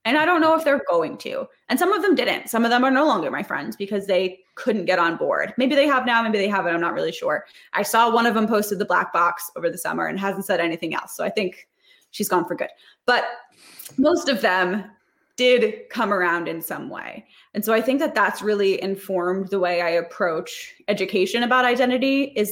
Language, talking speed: English, 235 wpm